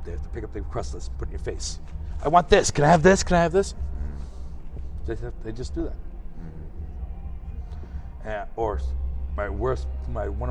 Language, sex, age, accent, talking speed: English, male, 60-79, American, 195 wpm